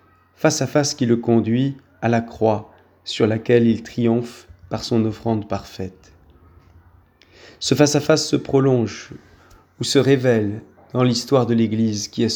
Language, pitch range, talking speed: French, 105-130 Hz, 155 wpm